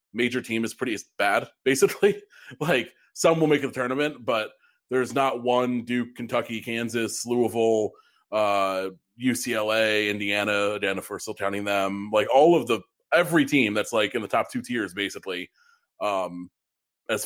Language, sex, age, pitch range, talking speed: English, male, 30-49, 100-125 Hz, 155 wpm